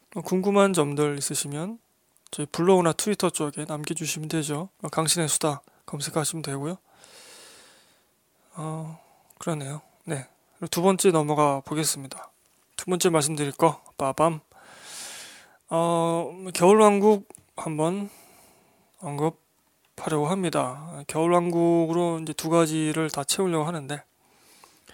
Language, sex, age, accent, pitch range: Korean, male, 20-39, native, 150-185 Hz